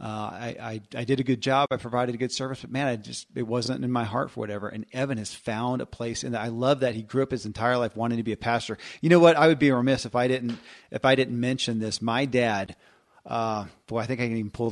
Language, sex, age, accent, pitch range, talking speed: English, male, 40-59, American, 110-130 Hz, 290 wpm